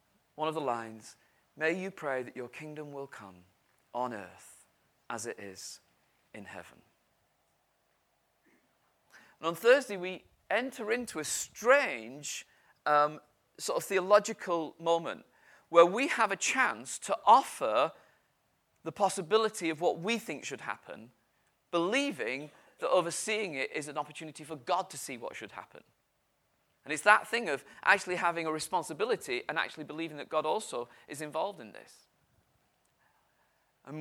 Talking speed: 145 wpm